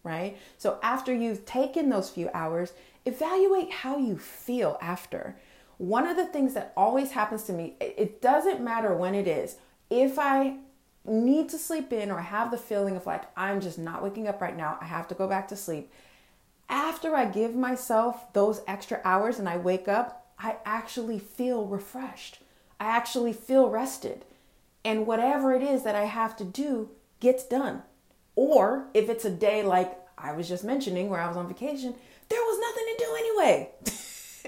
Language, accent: English, American